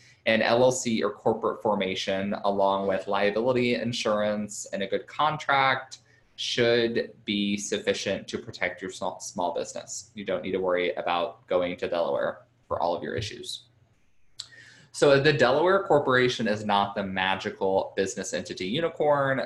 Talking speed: 140 wpm